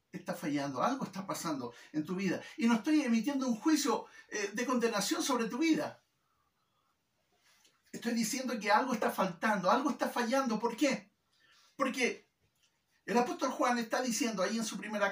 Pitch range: 165-250 Hz